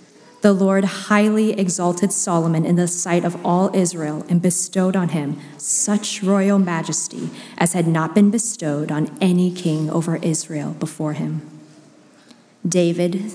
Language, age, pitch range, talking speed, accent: English, 30-49, 155-190 Hz, 140 wpm, American